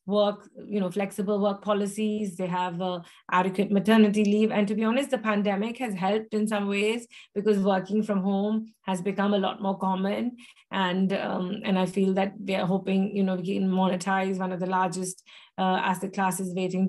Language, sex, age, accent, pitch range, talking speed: English, female, 30-49, Indian, 190-220 Hz, 195 wpm